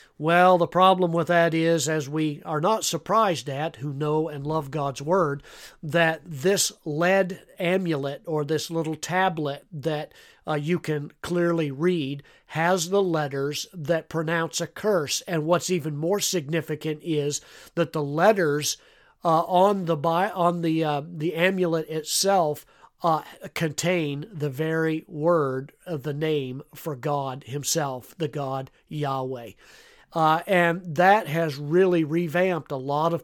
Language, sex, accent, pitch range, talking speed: English, male, American, 145-175 Hz, 145 wpm